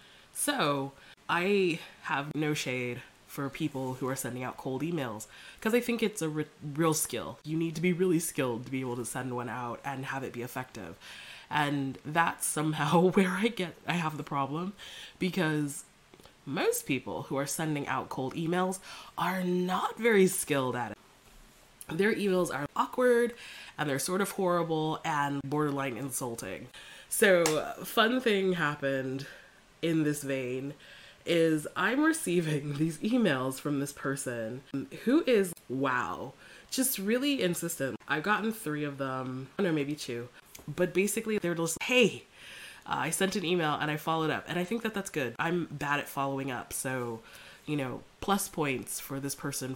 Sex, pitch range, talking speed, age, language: female, 135-185 Hz, 170 wpm, 20-39, English